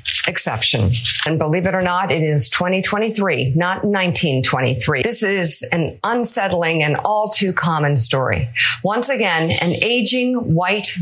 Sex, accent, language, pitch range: female, American, English, 160-225 Hz